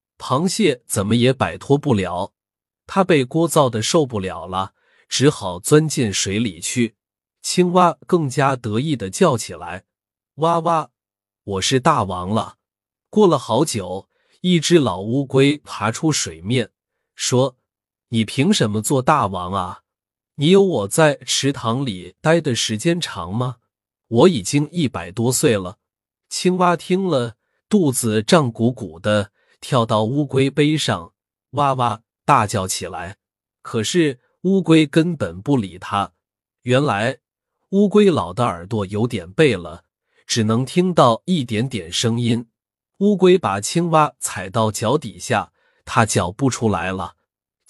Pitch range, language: 100-150 Hz, Chinese